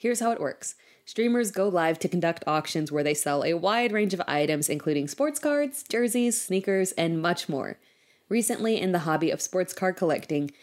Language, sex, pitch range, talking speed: English, female, 165-240 Hz, 190 wpm